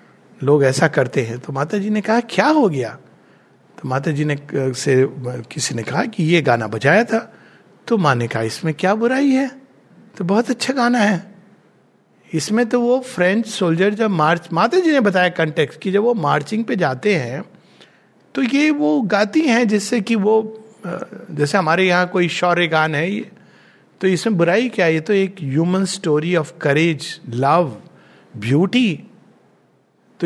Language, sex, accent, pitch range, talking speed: English, male, Indian, 155-220 Hz, 125 wpm